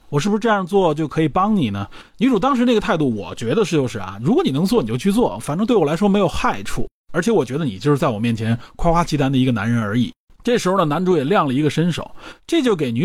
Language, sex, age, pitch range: Chinese, male, 30-49, 130-215 Hz